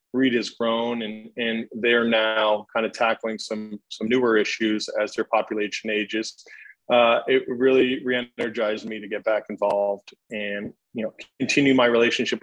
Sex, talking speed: male, 160 wpm